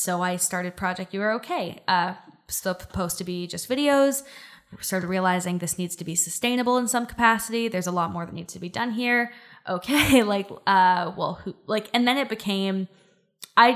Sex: female